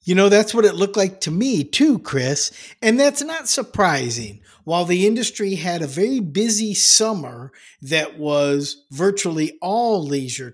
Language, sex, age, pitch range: English, male, 50-69, 145-190 Hz